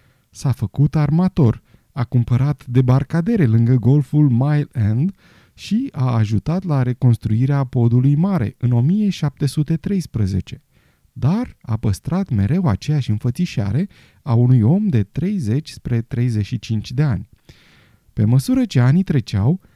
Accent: native